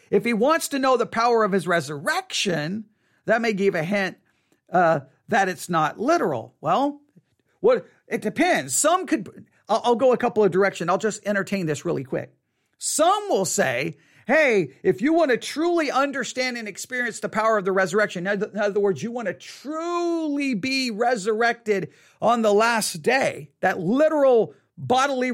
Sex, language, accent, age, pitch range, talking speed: male, English, American, 50-69, 185-255 Hz, 170 wpm